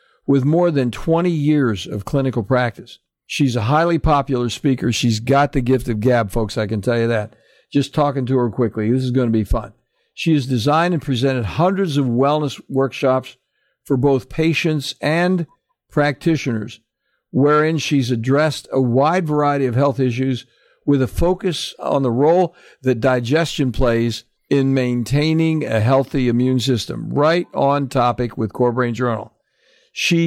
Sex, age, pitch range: male, 60-79, 125-150 Hz